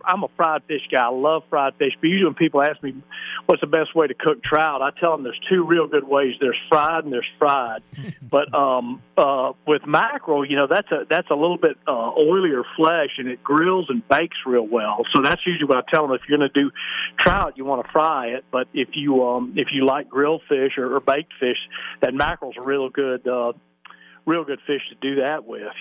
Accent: American